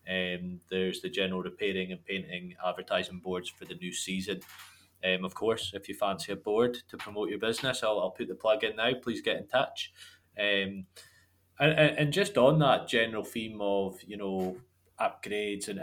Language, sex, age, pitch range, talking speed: English, male, 20-39, 95-115 Hz, 185 wpm